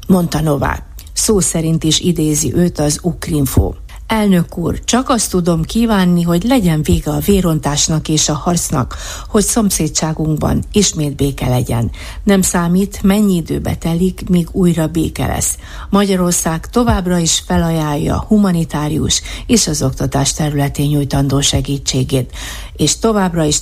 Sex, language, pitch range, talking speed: female, Hungarian, 140-185 Hz, 125 wpm